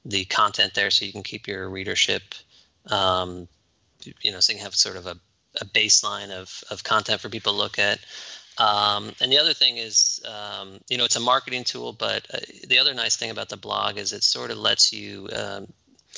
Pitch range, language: 100-115 Hz, English